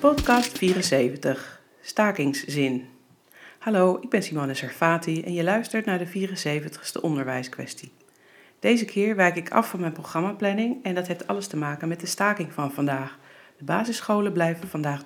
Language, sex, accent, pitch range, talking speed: Dutch, female, Dutch, 150-210 Hz, 150 wpm